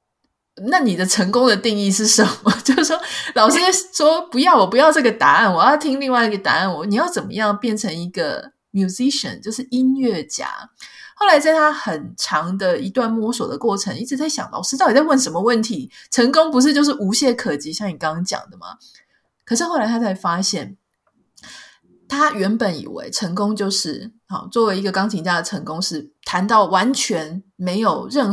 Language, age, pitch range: Chinese, 20-39, 190-250 Hz